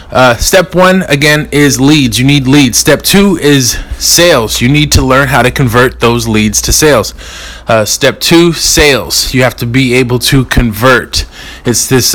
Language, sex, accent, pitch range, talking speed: English, male, American, 115-145 Hz, 185 wpm